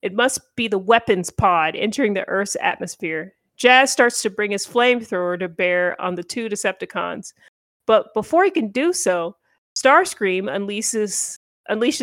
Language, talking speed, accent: English, 150 wpm, American